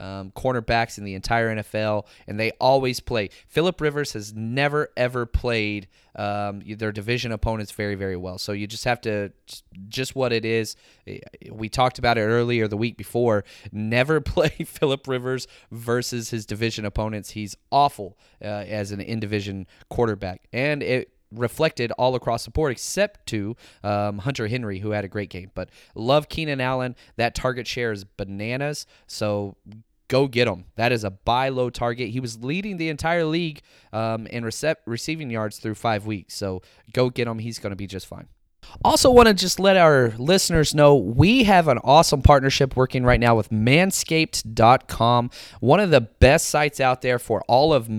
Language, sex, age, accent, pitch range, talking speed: English, male, 20-39, American, 105-145 Hz, 180 wpm